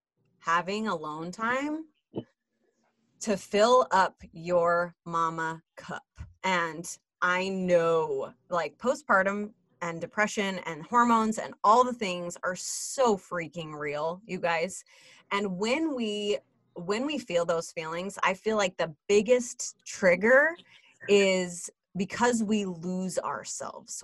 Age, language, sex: 30-49, English, female